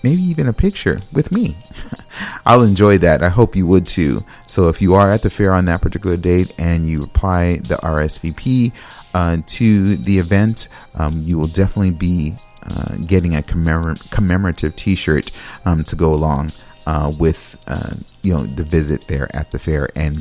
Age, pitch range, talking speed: 40-59, 80-100 Hz, 175 wpm